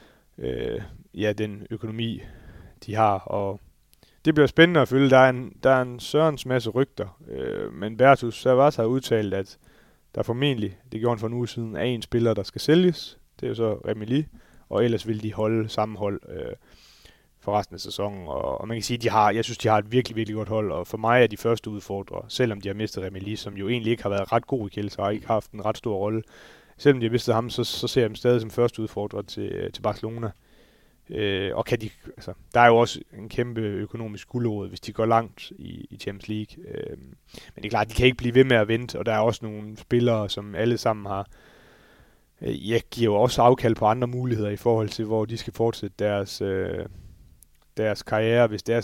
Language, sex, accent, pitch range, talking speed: Danish, male, native, 105-120 Hz, 225 wpm